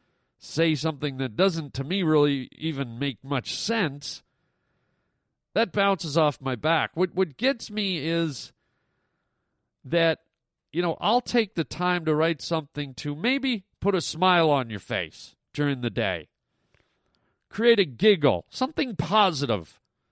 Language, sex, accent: English, male, American